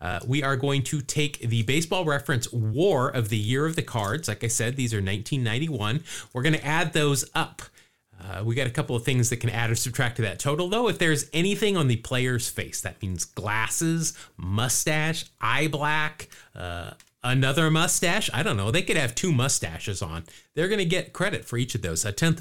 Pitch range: 110-150 Hz